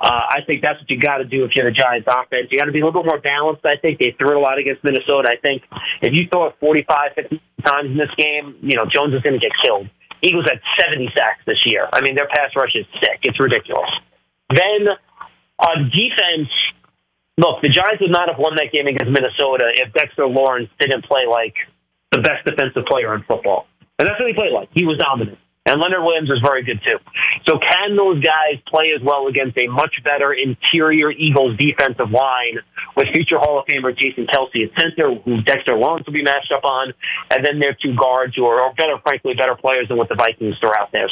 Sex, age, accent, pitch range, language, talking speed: male, 30-49, American, 130-160 Hz, English, 230 wpm